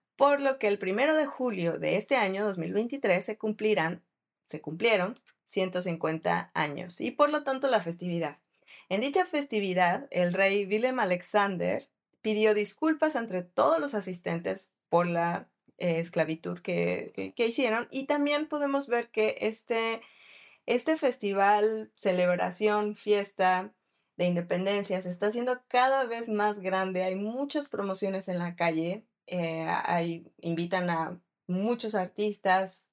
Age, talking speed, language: 20-39, 135 wpm, Spanish